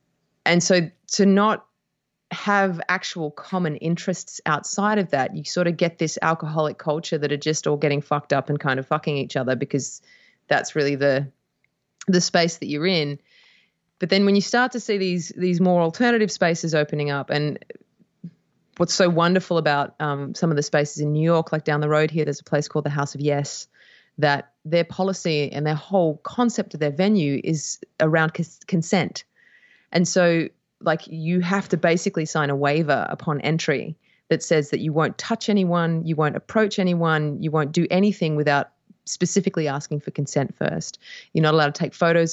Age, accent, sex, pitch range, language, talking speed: 30-49, Australian, female, 150-190 Hz, English, 190 wpm